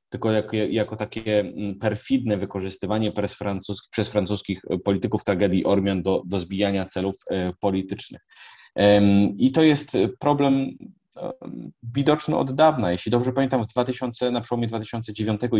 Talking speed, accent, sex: 120 wpm, native, male